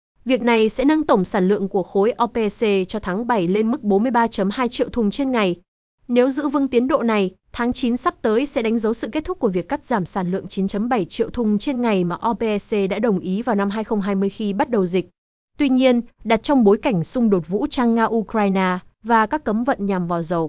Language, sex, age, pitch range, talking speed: Vietnamese, female, 20-39, 200-250 Hz, 225 wpm